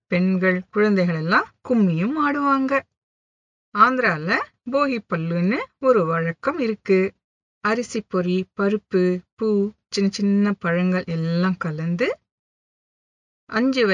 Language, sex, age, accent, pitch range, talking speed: English, female, 50-69, Indian, 170-250 Hz, 85 wpm